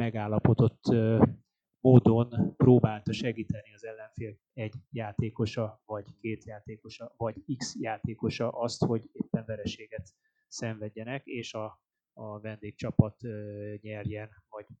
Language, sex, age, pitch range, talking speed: Hungarian, male, 20-39, 110-130 Hz, 100 wpm